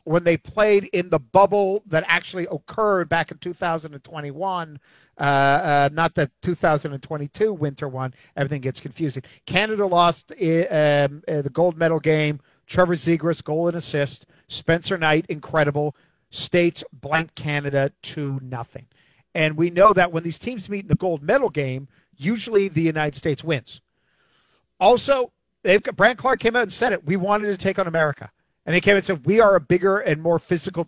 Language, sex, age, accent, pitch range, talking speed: English, male, 50-69, American, 145-195 Hz, 170 wpm